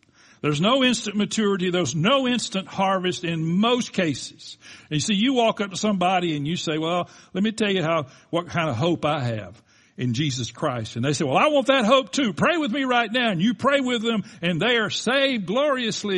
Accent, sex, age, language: American, male, 60-79, English